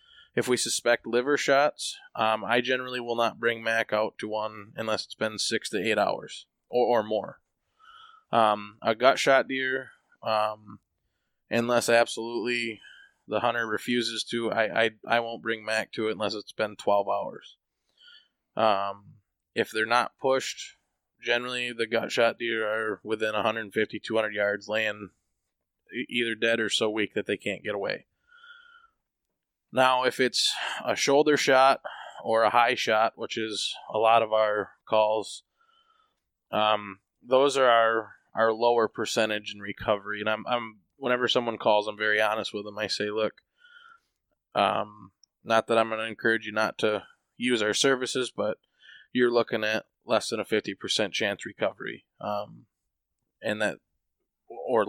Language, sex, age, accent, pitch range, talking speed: English, male, 20-39, American, 110-125 Hz, 155 wpm